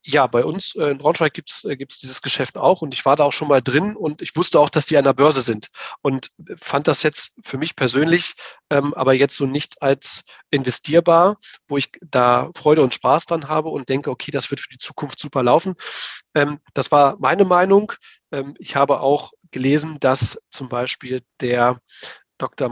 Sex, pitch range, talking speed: male, 125-145 Hz, 200 wpm